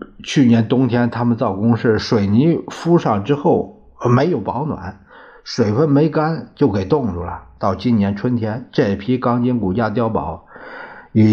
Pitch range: 95-135 Hz